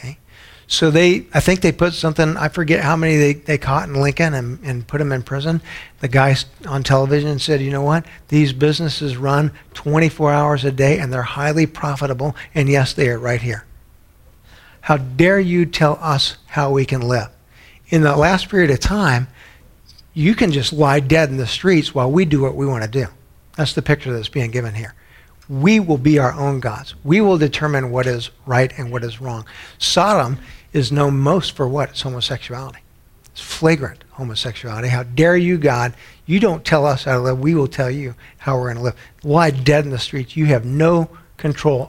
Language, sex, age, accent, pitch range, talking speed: English, male, 50-69, American, 125-155 Hz, 200 wpm